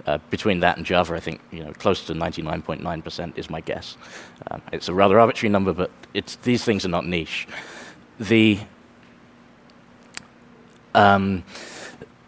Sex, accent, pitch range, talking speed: male, British, 90-110 Hz, 160 wpm